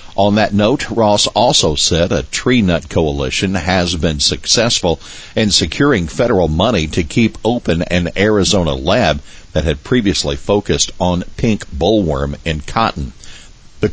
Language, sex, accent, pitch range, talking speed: English, male, American, 80-100 Hz, 140 wpm